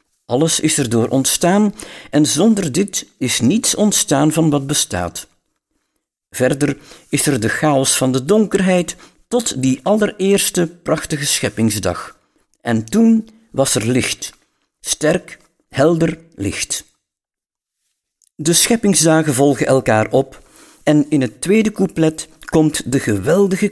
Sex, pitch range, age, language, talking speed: male, 115-175 Hz, 50-69, Dutch, 120 wpm